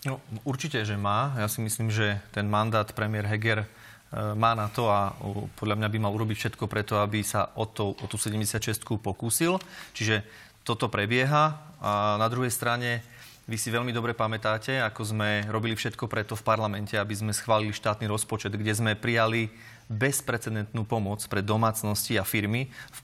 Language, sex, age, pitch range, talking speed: Slovak, male, 30-49, 105-125 Hz, 165 wpm